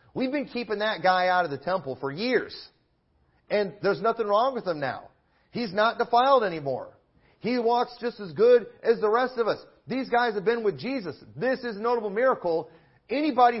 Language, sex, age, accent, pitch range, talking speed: English, male, 40-59, American, 140-215 Hz, 195 wpm